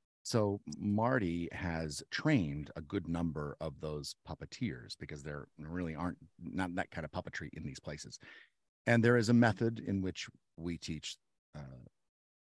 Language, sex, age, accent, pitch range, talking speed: English, male, 50-69, American, 80-115 Hz, 155 wpm